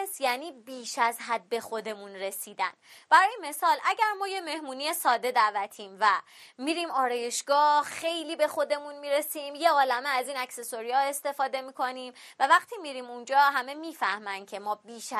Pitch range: 230-300 Hz